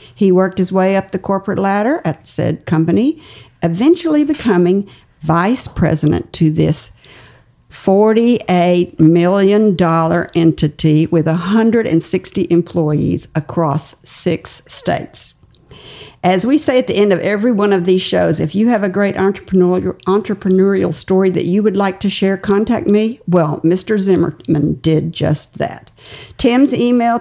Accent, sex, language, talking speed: American, female, English, 135 wpm